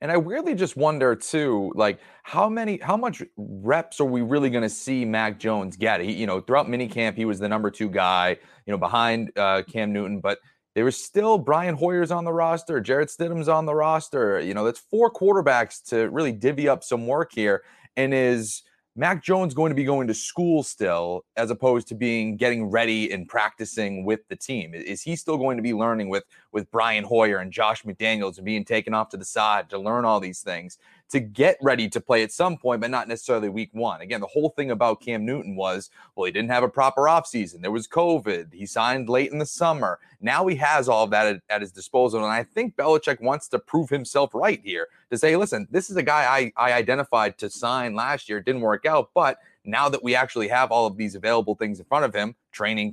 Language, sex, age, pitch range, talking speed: English, male, 30-49, 110-155 Hz, 230 wpm